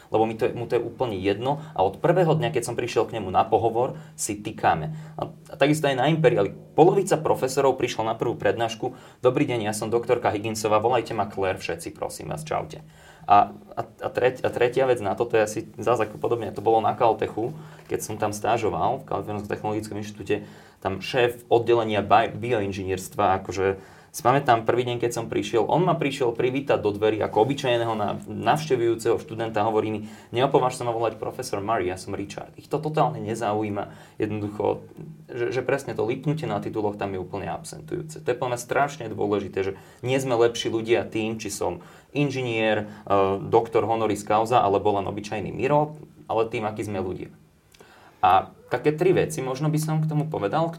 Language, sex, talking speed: Slovak, male, 185 wpm